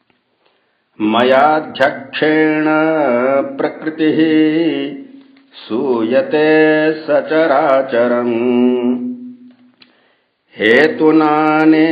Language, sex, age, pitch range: Hindi, male, 50-69, 135-165 Hz